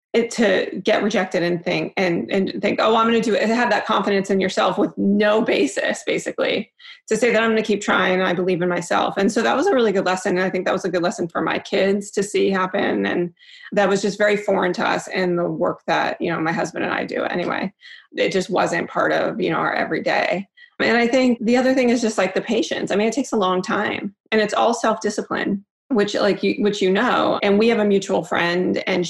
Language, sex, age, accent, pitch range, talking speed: English, female, 30-49, American, 185-220 Hz, 250 wpm